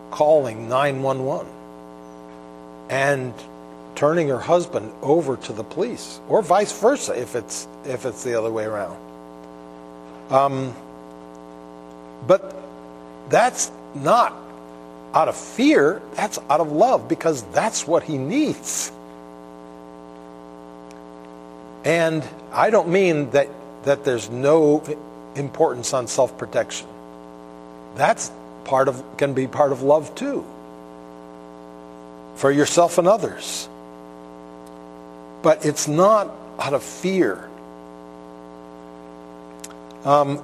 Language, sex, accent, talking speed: English, male, American, 100 wpm